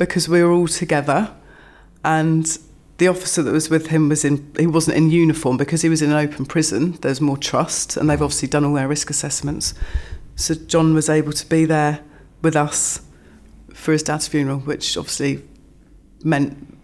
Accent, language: British, English